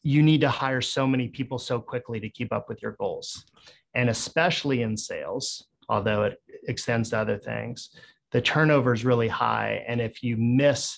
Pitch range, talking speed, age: 115-135 Hz, 185 wpm, 30-49